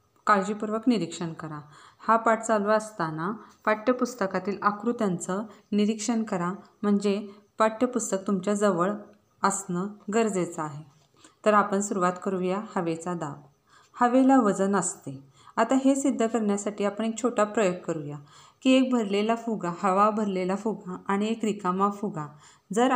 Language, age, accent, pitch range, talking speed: Marathi, 30-49, native, 185-235 Hz, 125 wpm